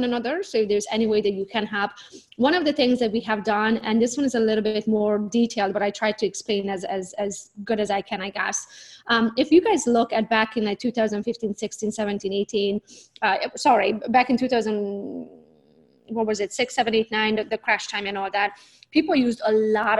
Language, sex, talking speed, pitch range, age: English, female, 230 wpm, 210-240 Hz, 20-39